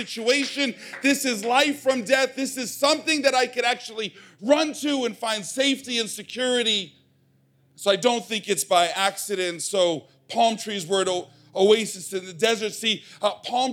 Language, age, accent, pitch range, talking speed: English, 40-59, American, 170-220 Hz, 170 wpm